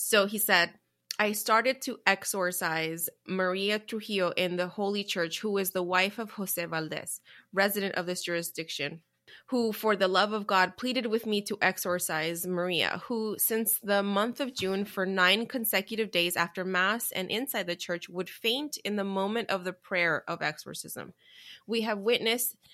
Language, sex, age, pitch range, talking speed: English, female, 20-39, 180-220 Hz, 170 wpm